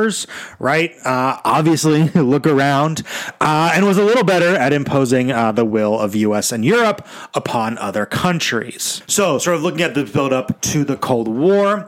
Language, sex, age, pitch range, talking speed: English, male, 30-49, 125-160 Hz, 170 wpm